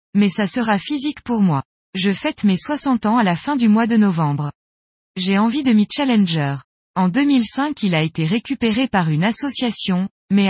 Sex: female